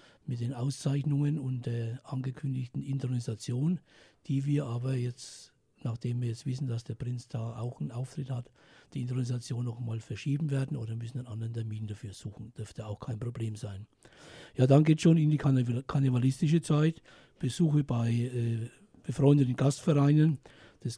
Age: 60-79